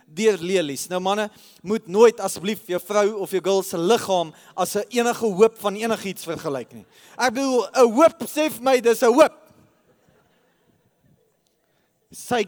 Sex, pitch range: male, 165-215 Hz